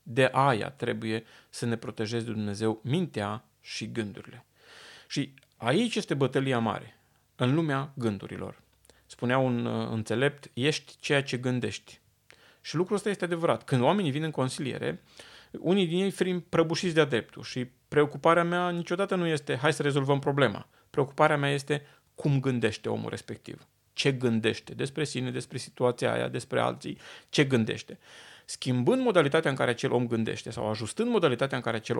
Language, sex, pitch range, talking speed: Romanian, male, 115-150 Hz, 160 wpm